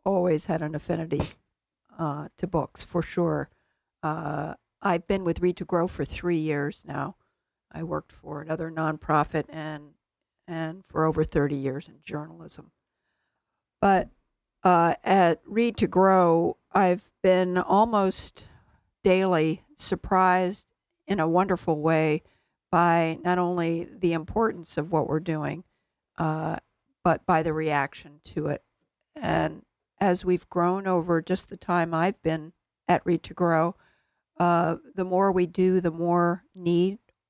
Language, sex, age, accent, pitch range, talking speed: English, female, 60-79, American, 160-185 Hz, 140 wpm